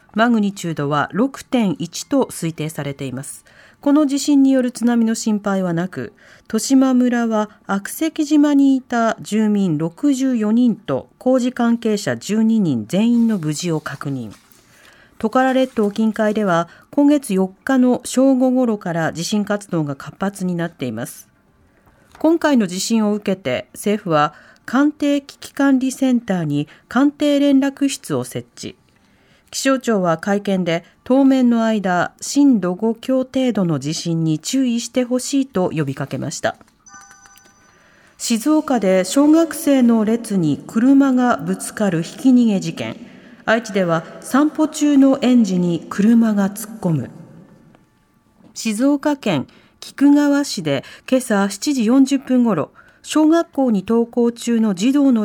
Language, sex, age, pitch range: Japanese, female, 40-59, 175-260 Hz